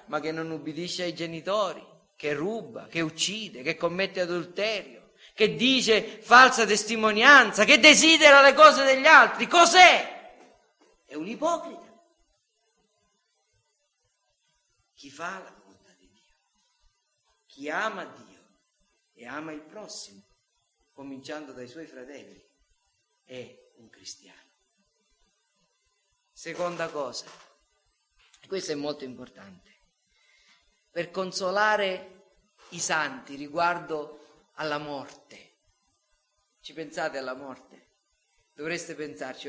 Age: 40-59